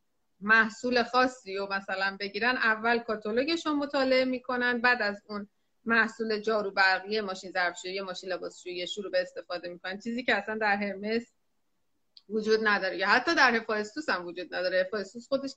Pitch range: 205-260 Hz